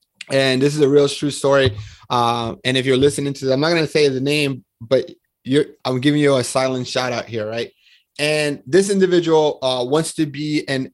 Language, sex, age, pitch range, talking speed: English, male, 30-49, 125-150 Hz, 215 wpm